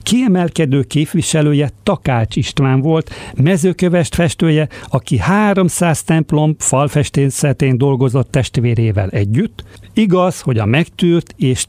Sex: male